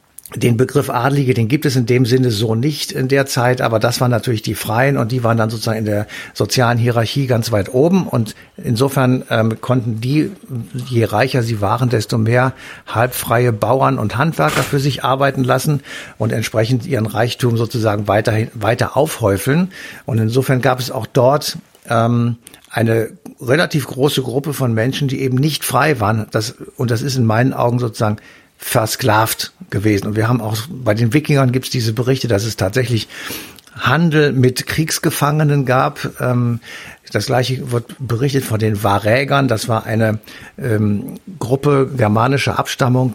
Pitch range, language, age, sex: 110-135 Hz, German, 60-79, male